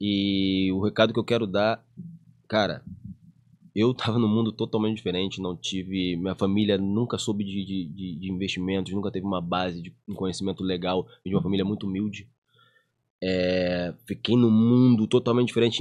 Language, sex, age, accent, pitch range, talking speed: Portuguese, male, 20-39, Brazilian, 95-120 Hz, 160 wpm